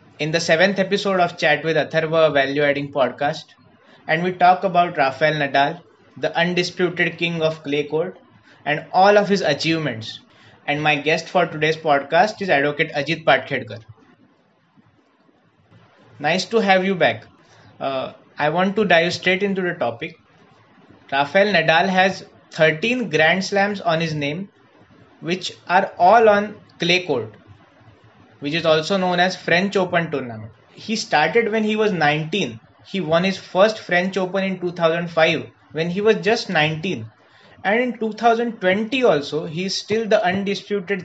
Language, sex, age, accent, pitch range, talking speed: Hindi, male, 20-39, native, 145-195 Hz, 150 wpm